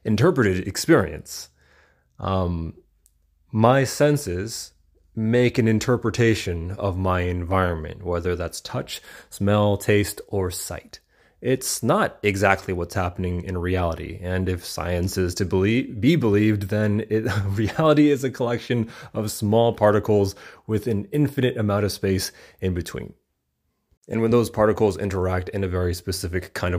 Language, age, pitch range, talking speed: English, 30-49, 90-120 Hz, 130 wpm